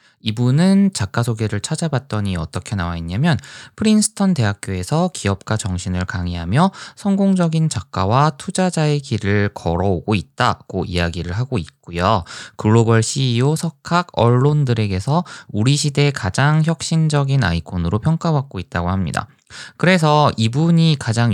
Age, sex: 20-39, male